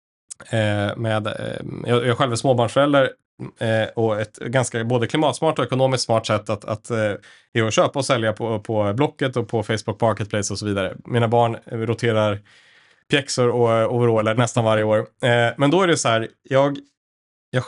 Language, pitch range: Swedish, 110-130 Hz